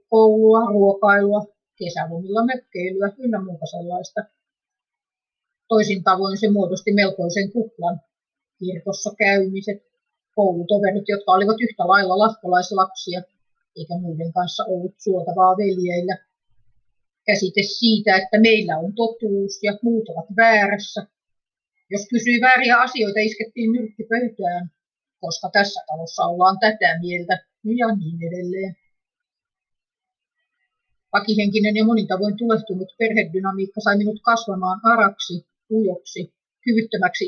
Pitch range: 185-225 Hz